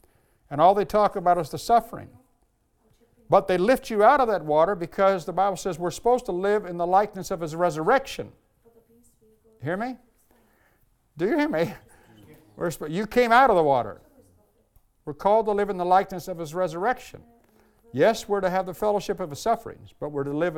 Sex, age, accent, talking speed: male, 60-79, American, 190 wpm